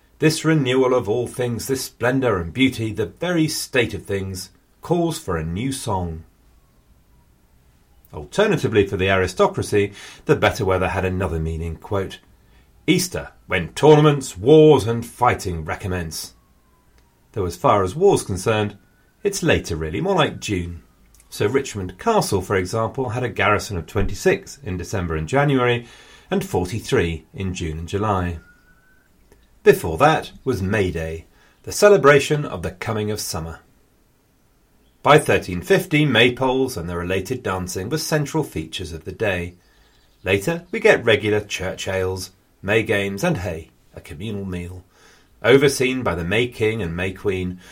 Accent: British